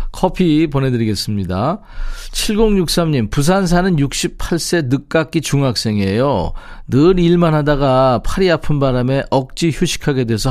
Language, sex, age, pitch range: Korean, male, 40-59, 115-175 Hz